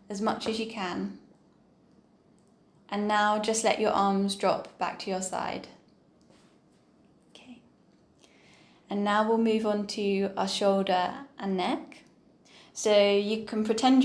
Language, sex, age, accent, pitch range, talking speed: English, female, 10-29, British, 185-220 Hz, 130 wpm